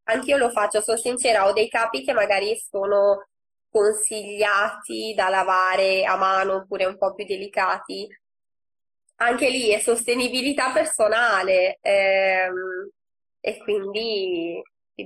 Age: 20-39